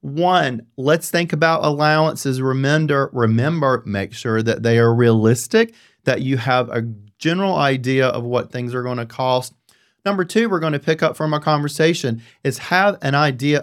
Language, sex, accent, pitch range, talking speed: English, male, American, 110-140 Hz, 175 wpm